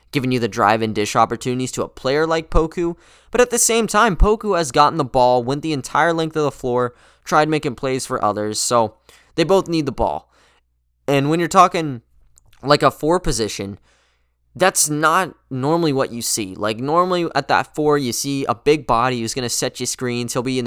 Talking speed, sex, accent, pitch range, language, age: 210 wpm, male, American, 115-145 Hz, English, 20-39